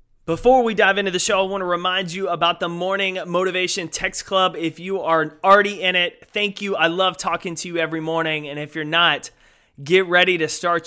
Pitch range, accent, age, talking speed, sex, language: 160-190 Hz, American, 30-49, 215 wpm, male, English